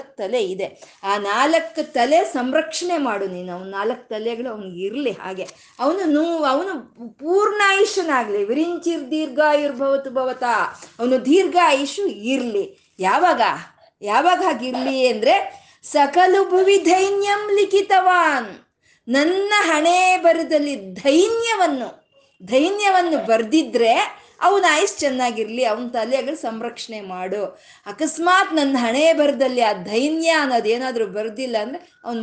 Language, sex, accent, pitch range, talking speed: Kannada, female, native, 225-325 Hz, 100 wpm